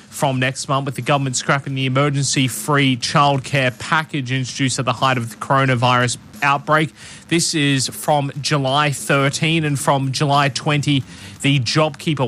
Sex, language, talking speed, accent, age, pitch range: male, English, 150 wpm, Australian, 20-39, 130-145 Hz